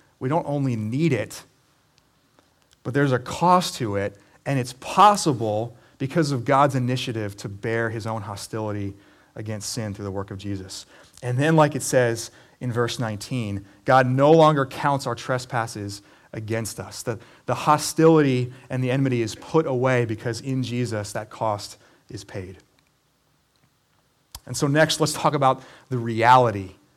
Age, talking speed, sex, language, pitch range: 30-49, 155 wpm, male, English, 110-155 Hz